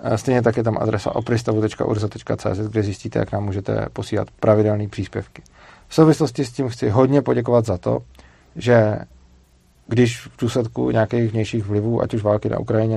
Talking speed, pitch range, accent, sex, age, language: 160 wpm, 105-120 Hz, native, male, 40-59, Czech